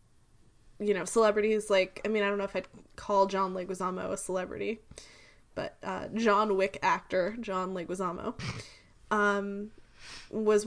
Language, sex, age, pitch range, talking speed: English, female, 10-29, 185-210 Hz, 140 wpm